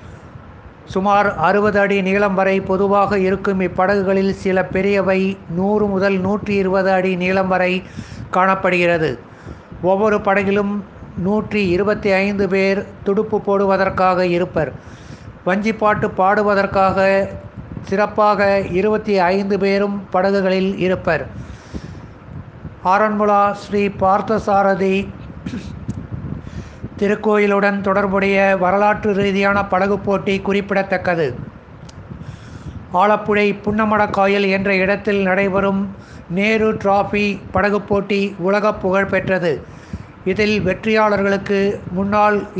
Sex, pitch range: male, 190-205 Hz